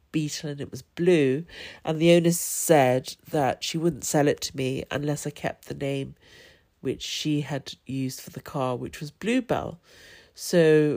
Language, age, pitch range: English, 40-59, 130-155 Hz